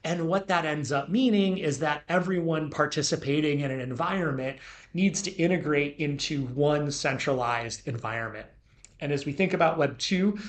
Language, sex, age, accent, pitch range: Chinese, male, 30-49, American, 125-150 Hz